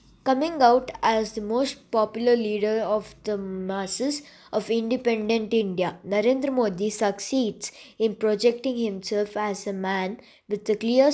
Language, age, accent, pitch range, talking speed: English, 20-39, Indian, 205-240 Hz, 135 wpm